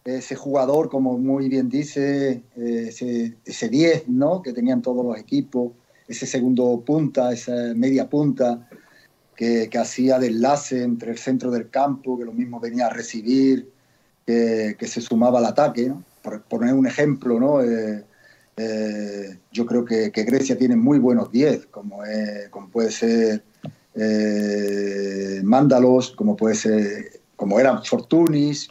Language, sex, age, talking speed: Greek, male, 40-59, 140 wpm